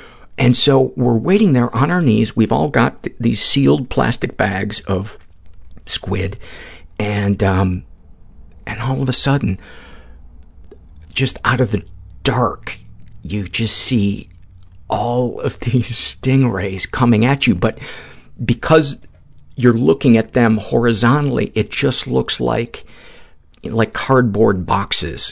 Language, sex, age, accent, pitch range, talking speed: English, male, 50-69, American, 95-125 Hz, 130 wpm